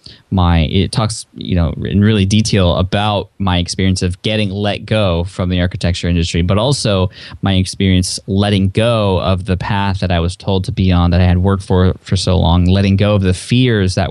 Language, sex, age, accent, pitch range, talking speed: English, male, 20-39, American, 90-110 Hz, 210 wpm